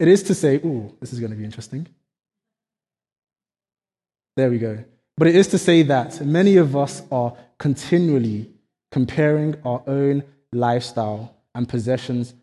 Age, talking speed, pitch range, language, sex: 20-39, 150 wpm, 120-155 Hz, English, male